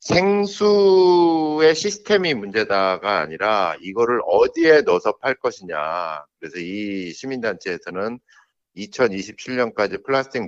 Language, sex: Korean, male